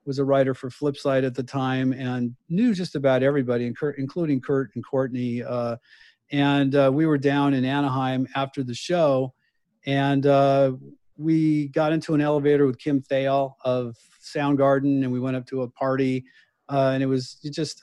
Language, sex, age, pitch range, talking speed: English, male, 40-59, 130-145 Hz, 175 wpm